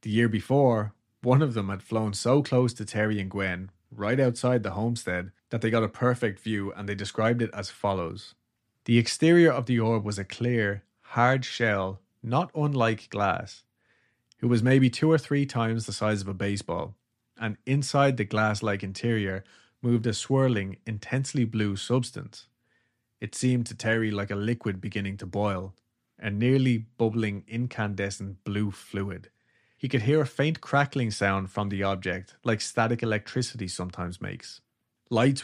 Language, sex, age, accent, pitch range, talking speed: English, male, 30-49, Irish, 100-120 Hz, 165 wpm